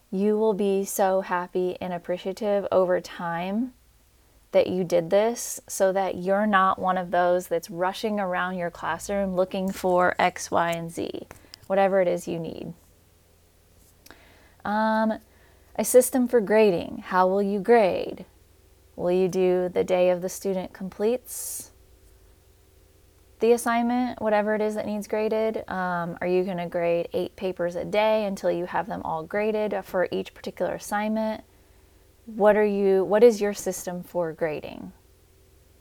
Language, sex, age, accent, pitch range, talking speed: English, female, 20-39, American, 170-205 Hz, 150 wpm